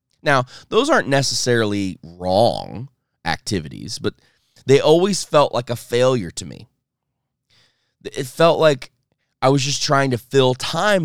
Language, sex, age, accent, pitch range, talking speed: English, male, 20-39, American, 100-135 Hz, 135 wpm